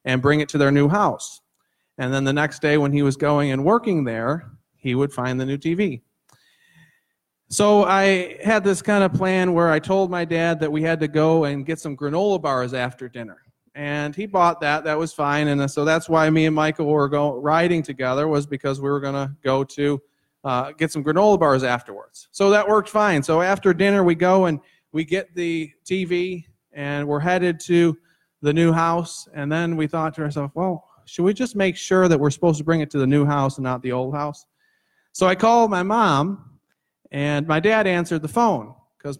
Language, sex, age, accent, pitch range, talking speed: English, male, 40-59, American, 145-185 Hz, 215 wpm